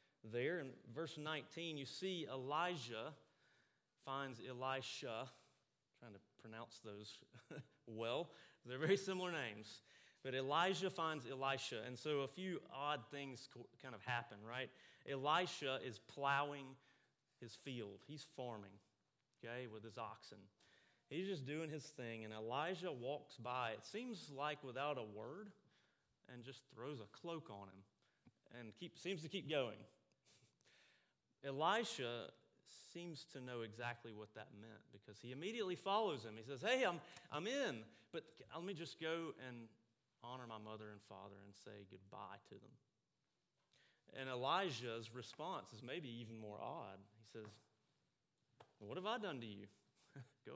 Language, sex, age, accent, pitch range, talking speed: English, male, 30-49, American, 115-150 Hz, 145 wpm